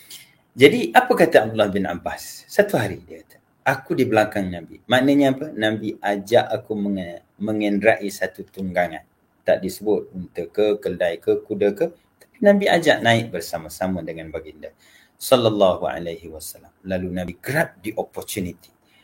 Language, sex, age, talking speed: Malay, male, 30-49, 140 wpm